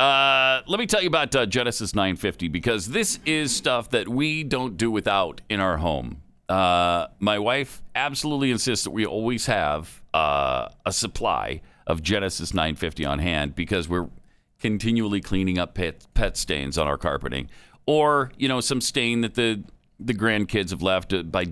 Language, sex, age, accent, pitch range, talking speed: English, male, 50-69, American, 95-135 Hz, 170 wpm